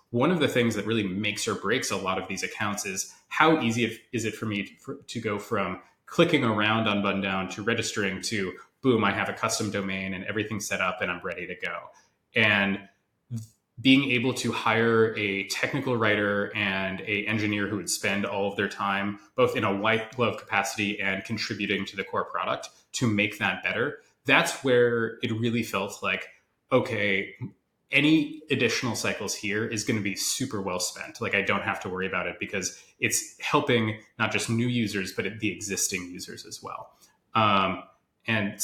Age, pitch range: 20-39, 100-115 Hz